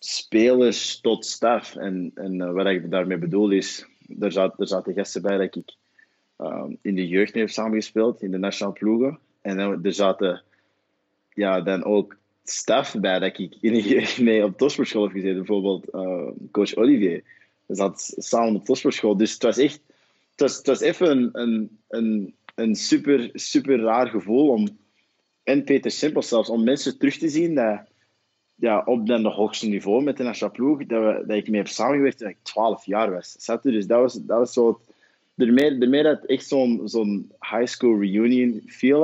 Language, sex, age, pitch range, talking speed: Dutch, male, 20-39, 100-120 Hz, 190 wpm